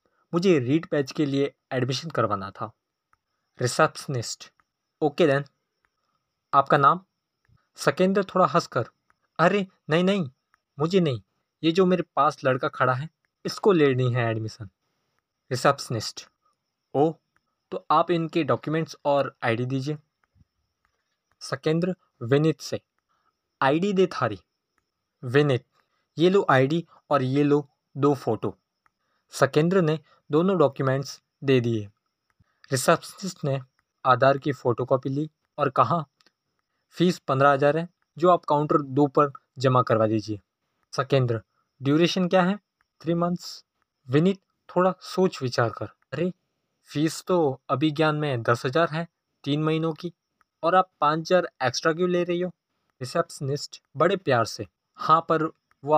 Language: Hindi